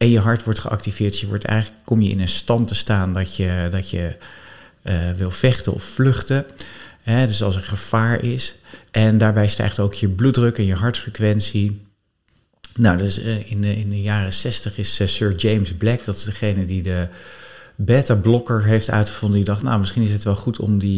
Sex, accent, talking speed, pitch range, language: male, Dutch, 205 wpm, 95-110 Hz, Dutch